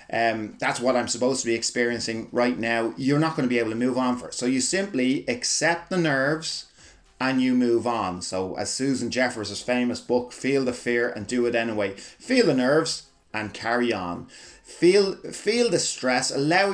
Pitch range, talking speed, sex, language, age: 115-145 Hz, 195 wpm, male, English, 30-49